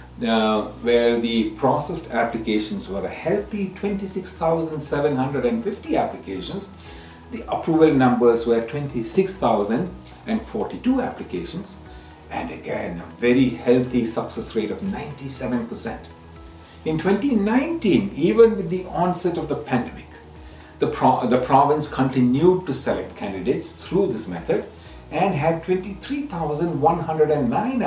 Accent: Indian